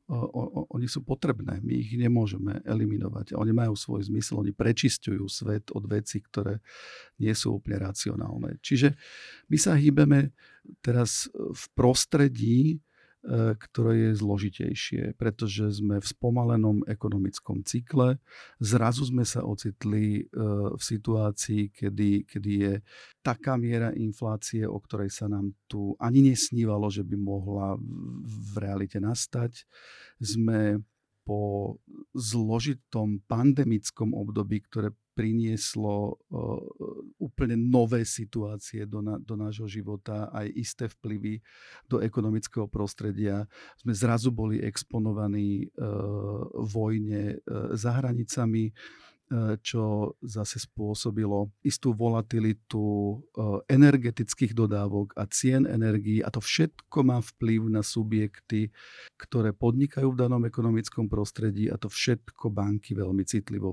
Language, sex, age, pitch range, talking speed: Slovak, male, 50-69, 105-120 Hz, 120 wpm